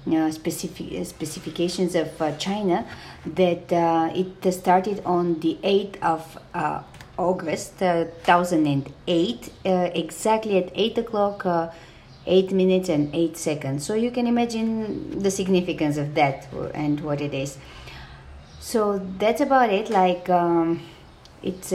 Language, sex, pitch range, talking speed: English, female, 145-185 Hz, 140 wpm